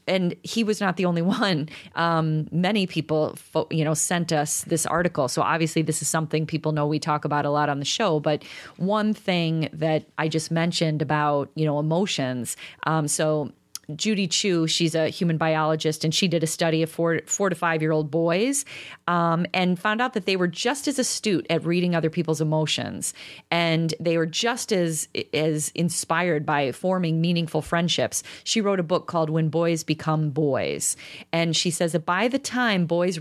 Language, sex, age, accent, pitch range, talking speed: English, female, 30-49, American, 155-190 Hz, 190 wpm